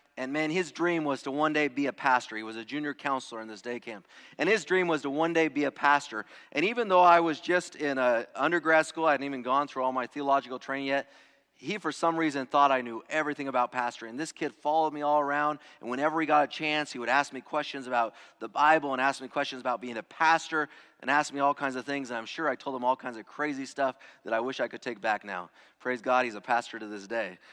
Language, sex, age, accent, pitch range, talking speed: English, male, 30-49, American, 130-165 Hz, 270 wpm